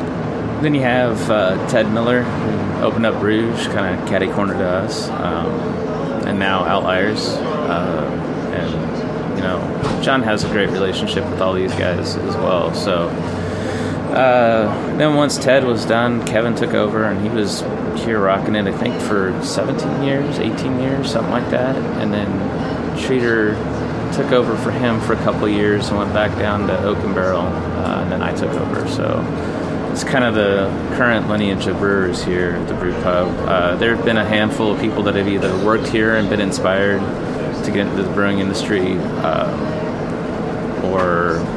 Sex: male